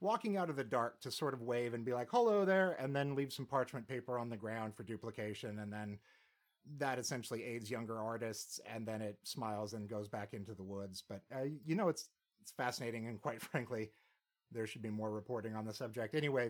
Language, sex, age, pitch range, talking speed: English, male, 30-49, 105-150 Hz, 220 wpm